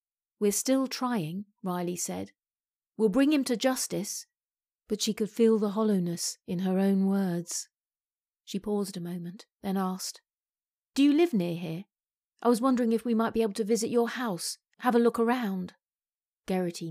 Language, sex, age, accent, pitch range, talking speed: English, female, 40-59, British, 175-225 Hz, 170 wpm